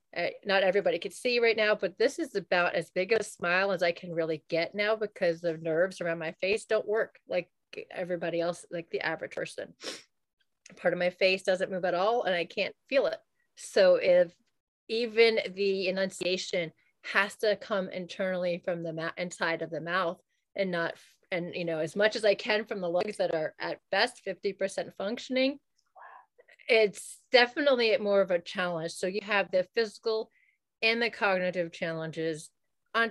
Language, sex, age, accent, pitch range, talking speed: English, female, 30-49, American, 170-215 Hz, 180 wpm